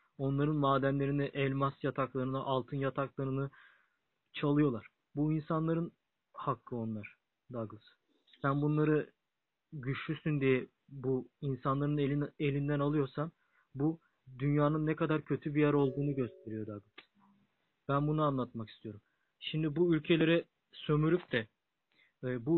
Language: Turkish